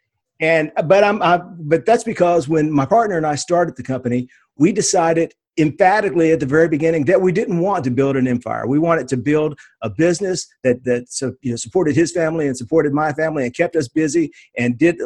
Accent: American